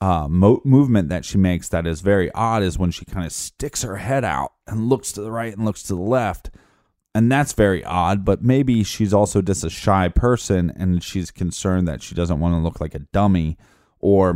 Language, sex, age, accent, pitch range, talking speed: English, male, 30-49, American, 85-100 Hz, 220 wpm